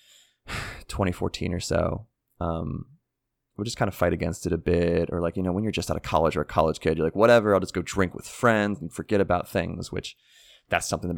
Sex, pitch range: male, 85-105 Hz